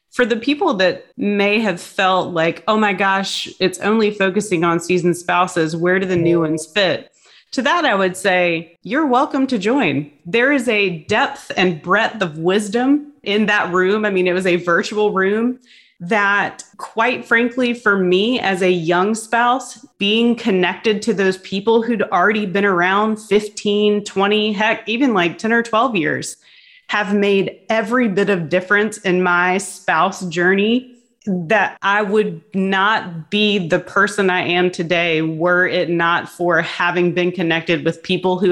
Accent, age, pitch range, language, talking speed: American, 30-49, 175-215 Hz, English, 165 wpm